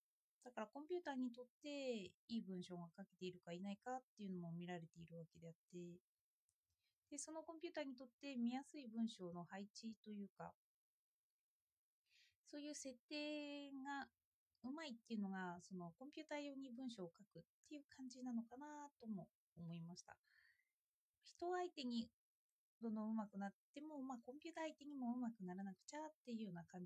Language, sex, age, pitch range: Japanese, female, 20-39, 180-275 Hz